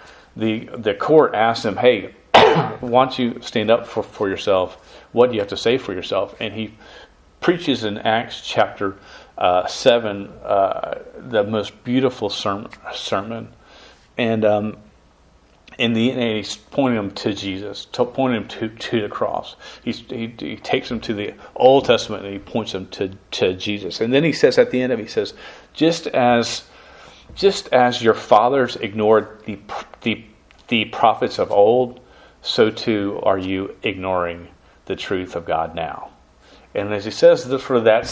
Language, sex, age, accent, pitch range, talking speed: English, male, 40-59, American, 95-120 Hz, 170 wpm